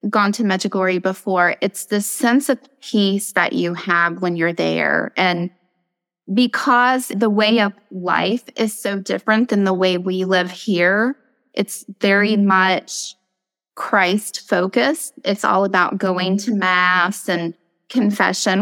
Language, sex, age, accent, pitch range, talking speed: English, female, 20-39, American, 185-225 Hz, 135 wpm